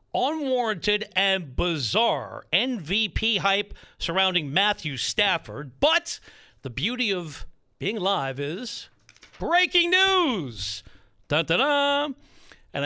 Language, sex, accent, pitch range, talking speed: English, male, American, 155-210 Hz, 100 wpm